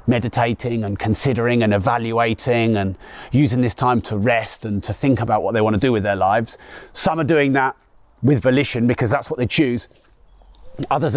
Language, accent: English, British